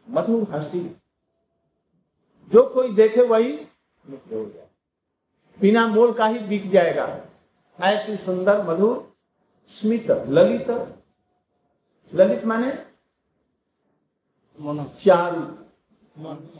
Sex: male